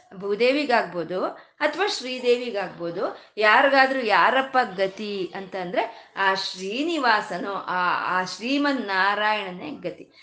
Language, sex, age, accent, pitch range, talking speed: Kannada, female, 20-39, native, 200-280 Hz, 75 wpm